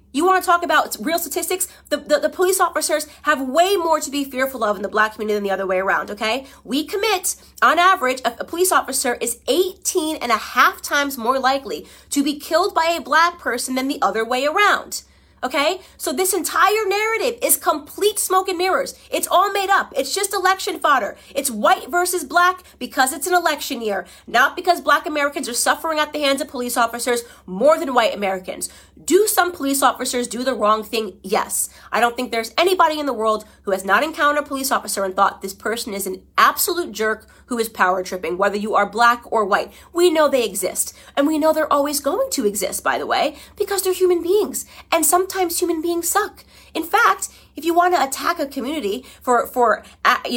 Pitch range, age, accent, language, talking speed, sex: 245-350 Hz, 30-49, American, English, 210 wpm, female